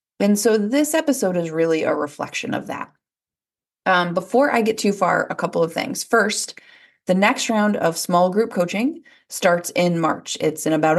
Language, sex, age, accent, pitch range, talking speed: English, female, 30-49, American, 170-225 Hz, 185 wpm